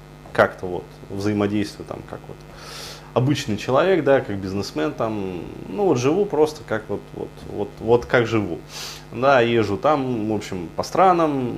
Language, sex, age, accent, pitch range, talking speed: Russian, male, 20-39, native, 100-140 Hz, 155 wpm